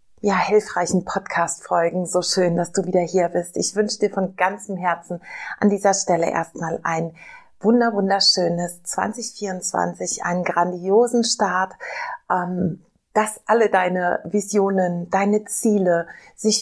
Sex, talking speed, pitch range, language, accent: female, 125 wpm, 170-205 Hz, German, German